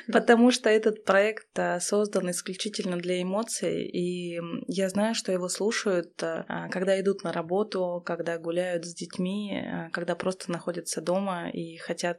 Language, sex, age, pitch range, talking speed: Russian, female, 20-39, 175-205 Hz, 140 wpm